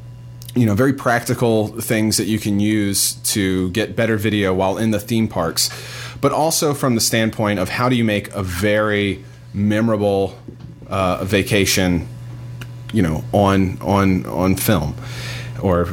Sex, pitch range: male, 100-125 Hz